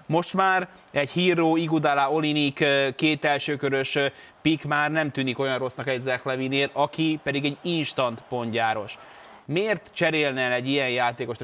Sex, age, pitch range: male, 20-39, 125-150 Hz